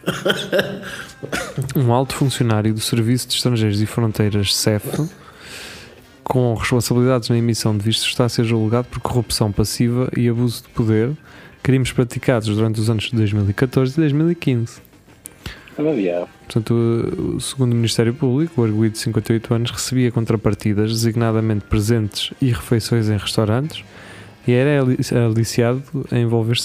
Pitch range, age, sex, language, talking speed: 110-130 Hz, 20-39, male, Portuguese, 135 wpm